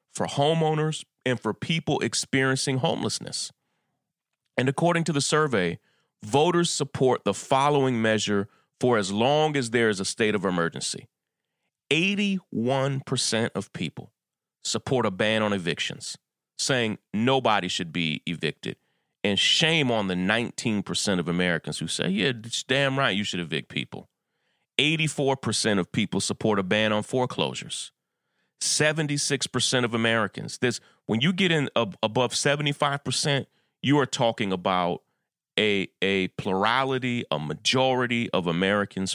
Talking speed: 140 wpm